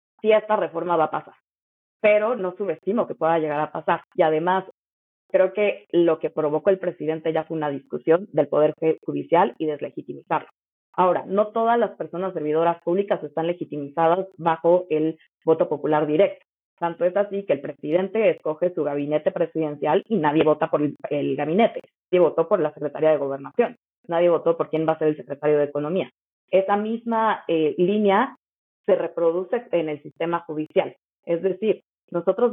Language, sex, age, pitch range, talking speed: Spanish, female, 30-49, 150-185 Hz, 175 wpm